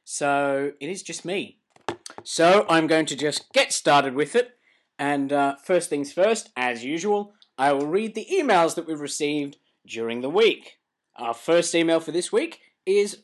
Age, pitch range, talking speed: 20-39, 130-210 Hz, 175 wpm